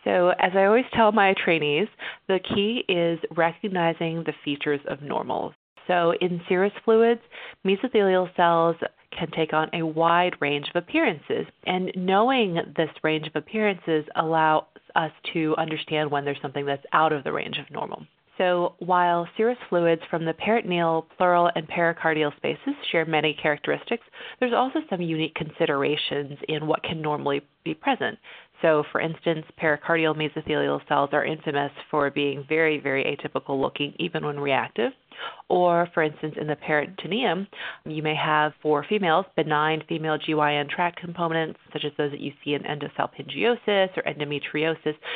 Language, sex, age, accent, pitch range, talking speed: English, female, 30-49, American, 150-180 Hz, 155 wpm